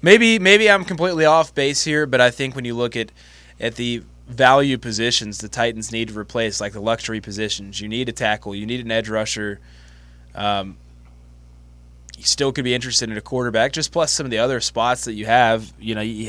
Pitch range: 100-120 Hz